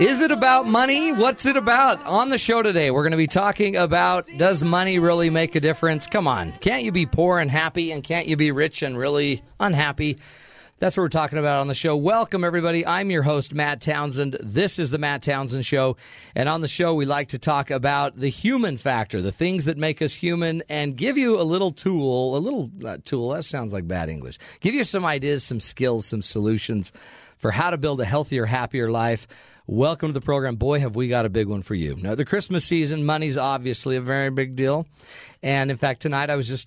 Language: English